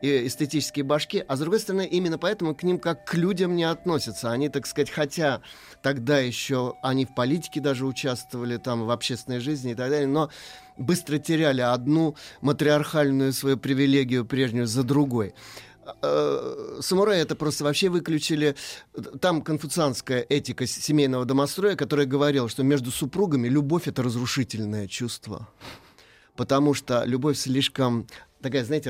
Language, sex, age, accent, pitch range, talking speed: Russian, male, 30-49, native, 125-155 Hz, 145 wpm